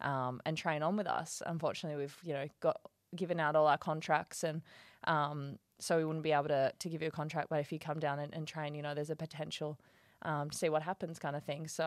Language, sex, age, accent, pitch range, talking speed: English, female, 20-39, Australian, 155-205 Hz, 260 wpm